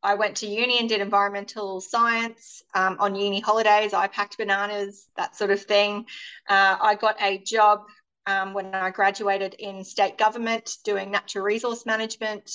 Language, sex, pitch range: English, female, 190-215 Hz